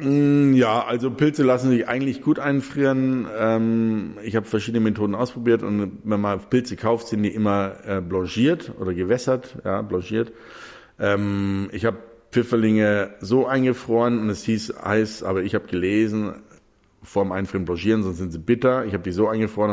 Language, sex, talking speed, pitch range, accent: German, male, 155 wpm, 95-120 Hz, German